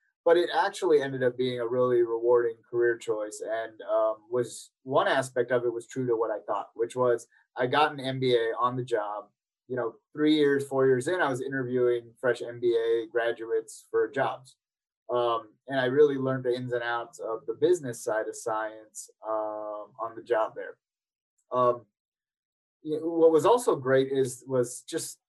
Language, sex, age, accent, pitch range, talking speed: English, male, 20-39, American, 120-150 Hz, 185 wpm